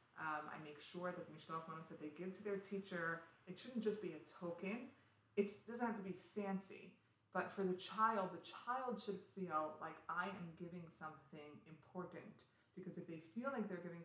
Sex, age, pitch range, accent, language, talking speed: female, 30-49, 155-185 Hz, American, English, 190 wpm